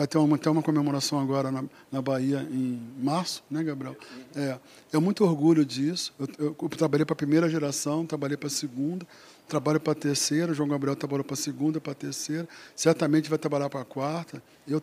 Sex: male